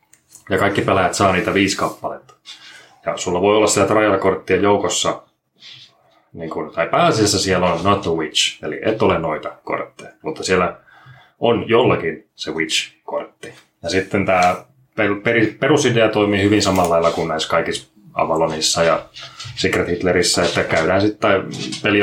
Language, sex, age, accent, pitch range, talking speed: Finnish, male, 20-39, native, 85-105 Hz, 145 wpm